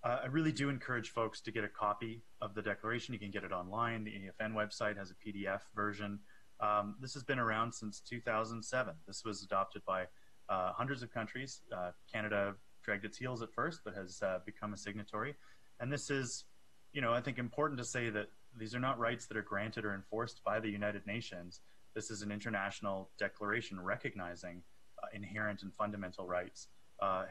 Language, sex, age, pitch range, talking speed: English, male, 30-49, 100-120 Hz, 195 wpm